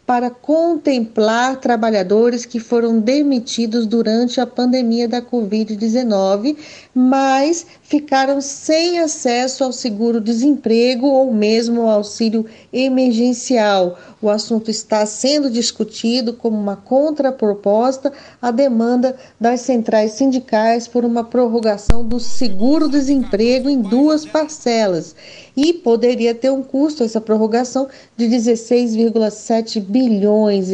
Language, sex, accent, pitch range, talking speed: Portuguese, female, Brazilian, 220-265 Hz, 105 wpm